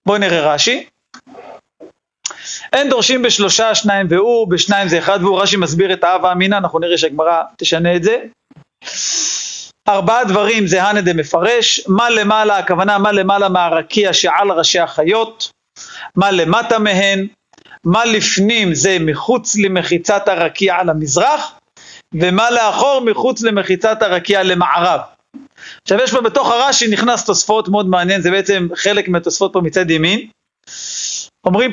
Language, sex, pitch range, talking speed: Hebrew, male, 180-225 Hz, 135 wpm